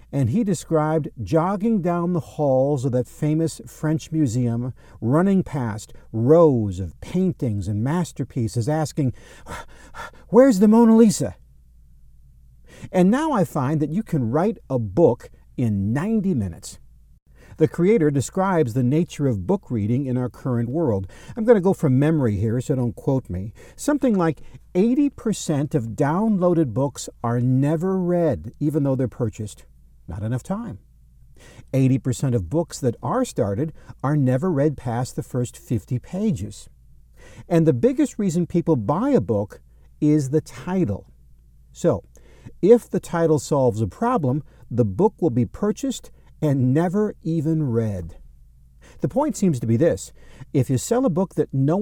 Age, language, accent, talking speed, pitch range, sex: 50-69, English, American, 150 wpm, 115-175 Hz, male